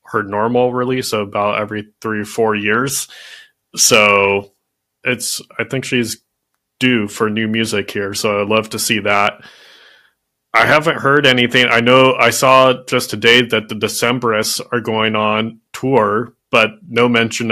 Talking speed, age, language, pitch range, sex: 155 wpm, 20-39, English, 110-120 Hz, male